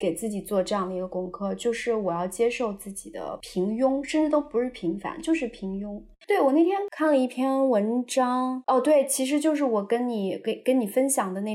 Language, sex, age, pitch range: Chinese, female, 20-39, 200-255 Hz